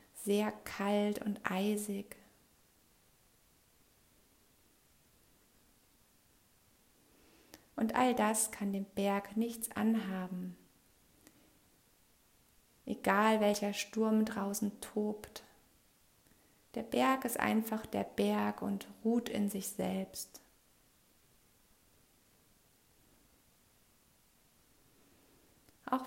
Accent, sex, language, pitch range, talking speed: German, female, German, 190-220 Hz, 65 wpm